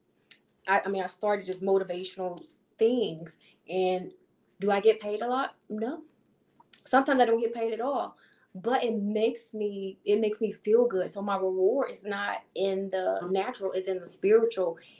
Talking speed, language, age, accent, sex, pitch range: 175 wpm, English, 20-39, American, female, 185-215 Hz